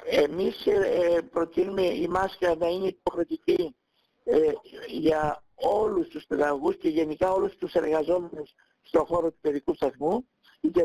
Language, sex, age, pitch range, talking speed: Greek, male, 60-79, 160-205 Hz, 120 wpm